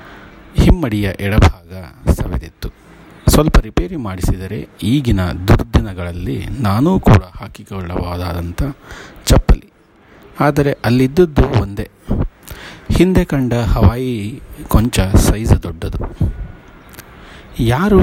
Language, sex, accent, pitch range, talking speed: Kannada, male, native, 90-115 Hz, 75 wpm